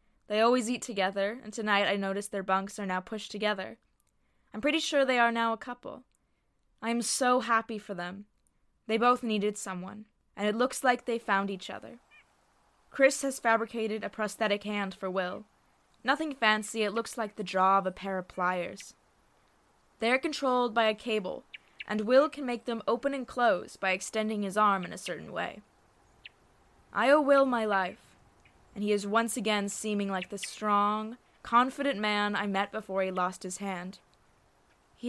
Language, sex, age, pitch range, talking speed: English, female, 10-29, 195-235 Hz, 180 wpm